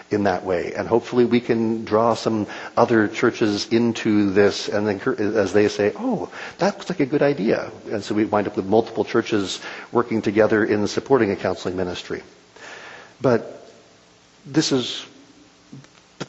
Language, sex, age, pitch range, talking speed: English, male, 50-69, 105-135 Hz, 160 wpm